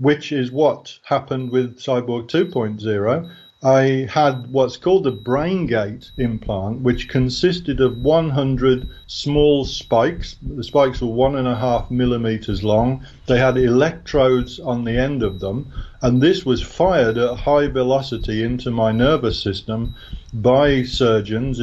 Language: English